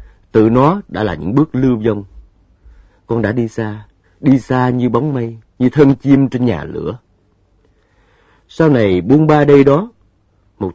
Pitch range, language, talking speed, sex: 95-140 Hz, Vietnamese, 165 wpm, male